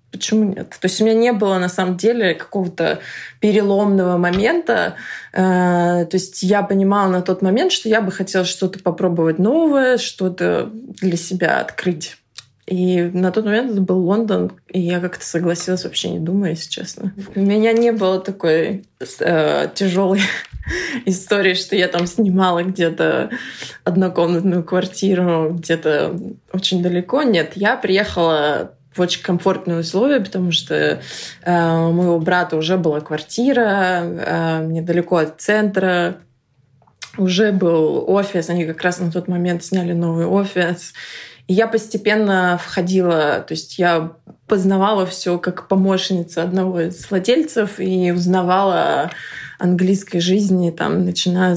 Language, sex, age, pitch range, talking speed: Russian, female, 20-39, 175-195 Hz, 140 wpm